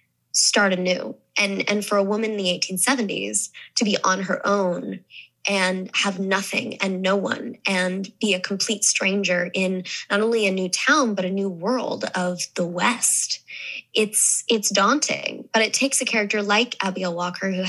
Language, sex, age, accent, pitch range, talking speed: English, female, 10-29, American, 185-210 Hz, 175 wpm